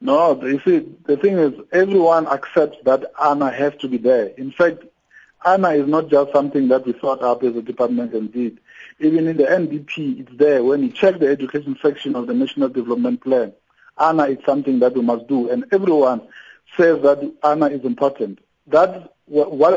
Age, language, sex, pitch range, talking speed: 50-69, English, male, 130-165 Hz, 190 wpm